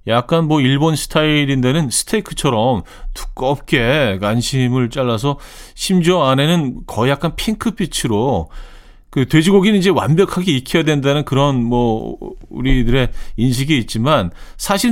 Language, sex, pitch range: Korean, male, 105-155 Hz